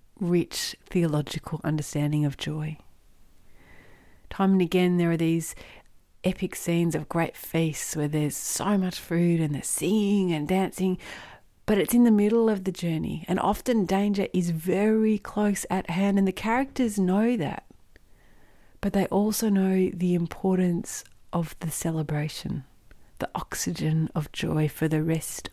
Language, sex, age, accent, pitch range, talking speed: English, female, 40-59, Australian, 150-190 Hz, 150 wpm